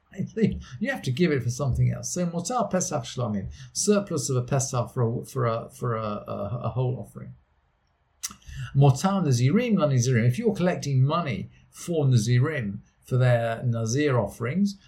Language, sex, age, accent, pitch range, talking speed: English, male, 50-69, British, 120-175 Hz, 165 wpm